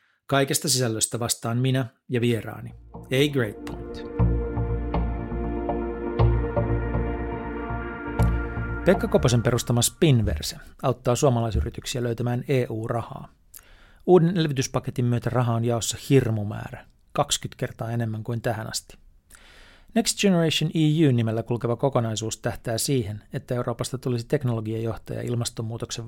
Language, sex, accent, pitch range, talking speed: Finnish, male, native, 115-135 Hz, 100 wpm